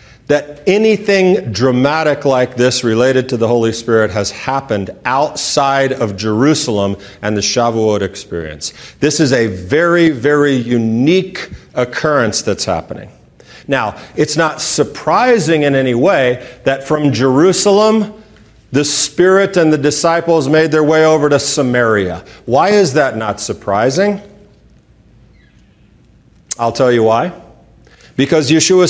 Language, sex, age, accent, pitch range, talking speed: English, male, 40-59, American, 125-185 Hz, 125 wpm